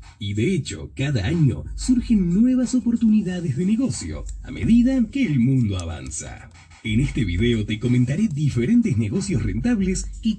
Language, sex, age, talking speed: Spanish, male, 30-49, 145 wpm